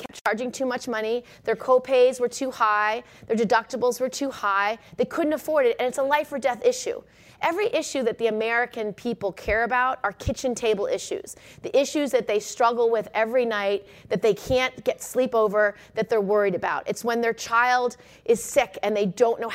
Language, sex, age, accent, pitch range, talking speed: English, female, 30-49, American, 225-280 Hz, 205 wpm